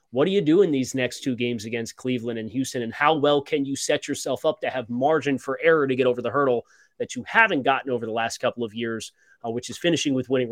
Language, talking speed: English, 270 wpm